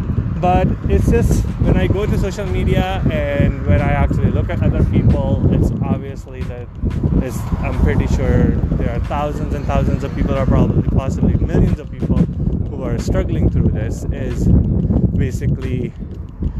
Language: English